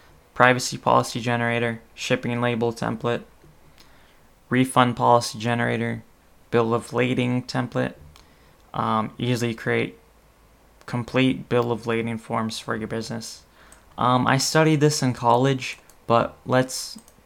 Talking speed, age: 110 wpm, 20-39